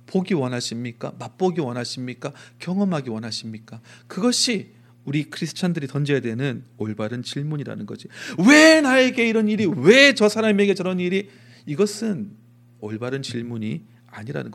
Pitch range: 120-165 Hz